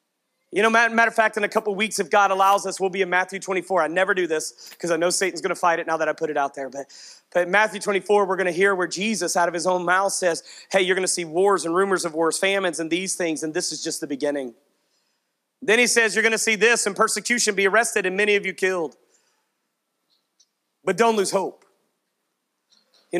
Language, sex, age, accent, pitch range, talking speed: English, male, 30-49, American, 175-215 Hz, 245 wpm